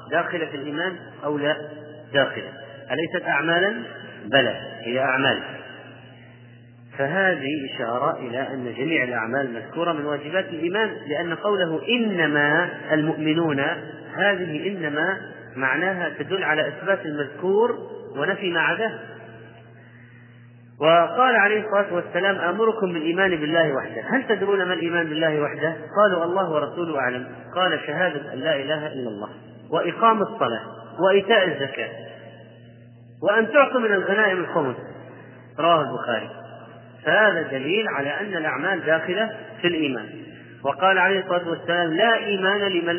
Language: Arabic